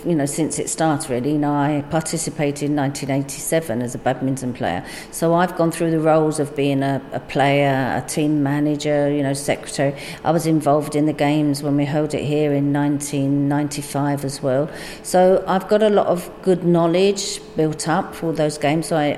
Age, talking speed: 50-69, 195 wpm